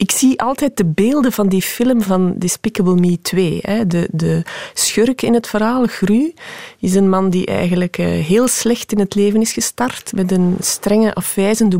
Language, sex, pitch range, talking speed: Dutch, female, 175-220 Hz, 180 wpm